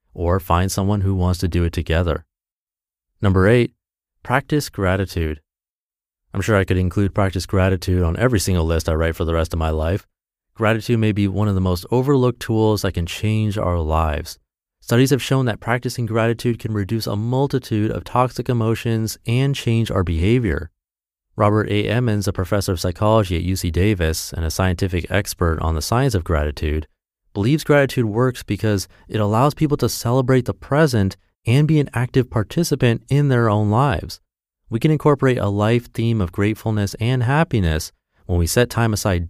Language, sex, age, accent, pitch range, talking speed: English, male, 30-49, American, 85-115 Hz, 180 wpm